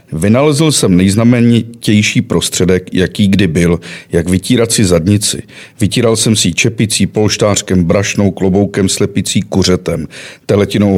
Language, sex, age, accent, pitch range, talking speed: Czech, male, 50-69, native, 95-115 Hz, 115 wpm